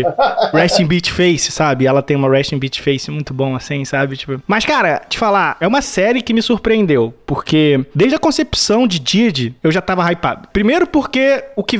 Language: Portuguese